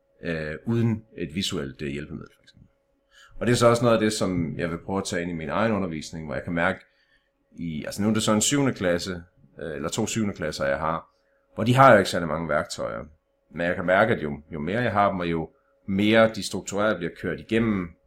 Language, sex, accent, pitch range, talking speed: Danish, male, native, 85-110 Hz, 240 wpm